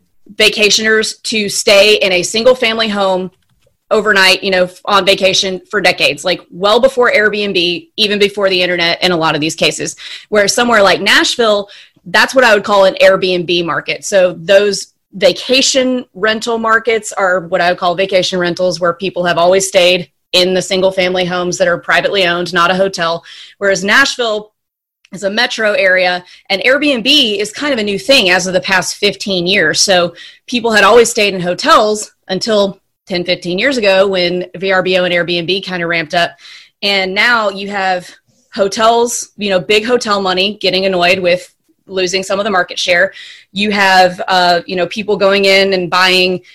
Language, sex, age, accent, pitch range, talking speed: English, female, 30-49, American, 180-210 Hz, 180 wpm